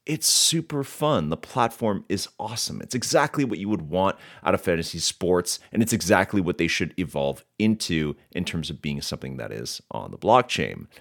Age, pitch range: 30-49, 90-125 Hz